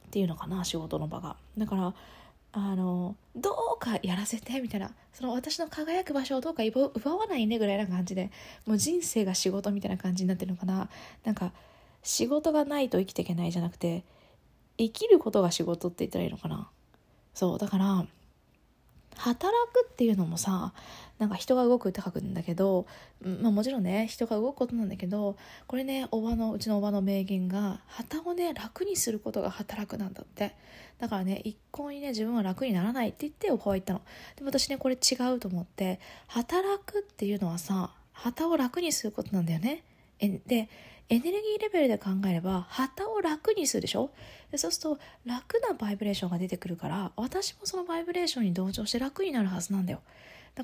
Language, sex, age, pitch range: Japanese, female, 20-39, 195-285 Hz